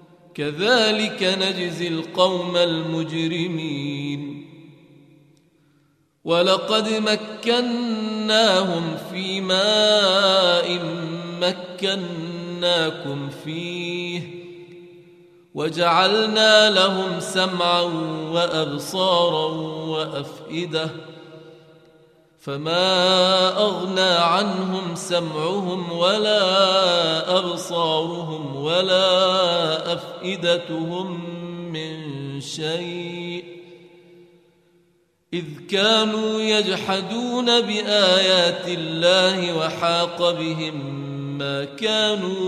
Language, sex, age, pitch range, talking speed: Arabic, male, 30-49, 160-190 Hz, 50 wpm